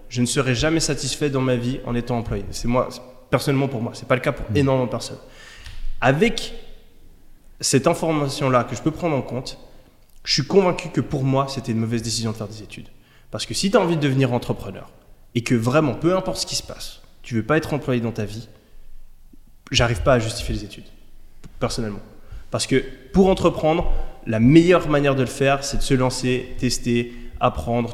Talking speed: 215 wpm